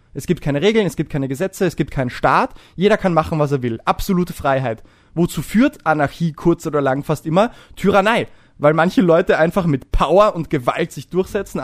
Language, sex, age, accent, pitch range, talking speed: German, male, 20-39, German, 150-200 Hz, 200 wpm